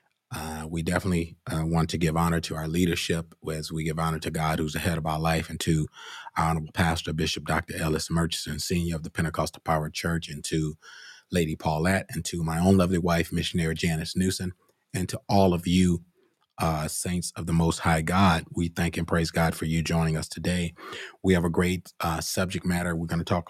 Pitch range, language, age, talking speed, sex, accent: 80-90 Hz, English, 30-49, 210 wpm, male, American